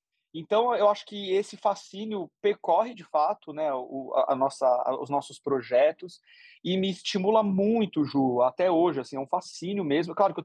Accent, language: Brazilian, Portuguese